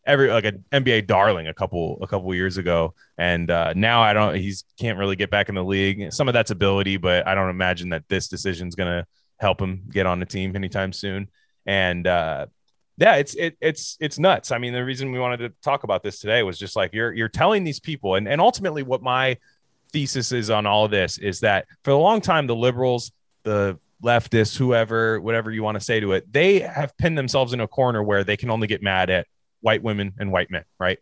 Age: 20-39